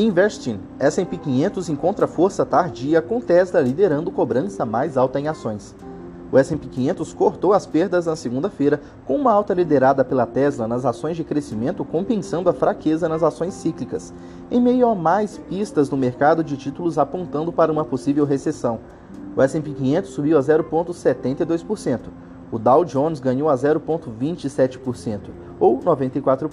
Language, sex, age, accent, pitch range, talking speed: English, male, 20-39, Brazilian, 130-165 Hz, 150 wpm